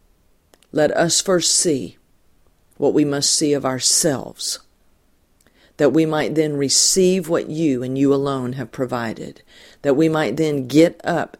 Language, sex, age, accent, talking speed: English, female, 50-69, American, 145 wpm